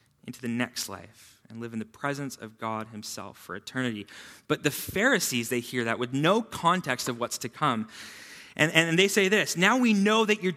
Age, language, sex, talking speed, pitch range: 20-39, English, male, 210 wpm, 120-170 Hz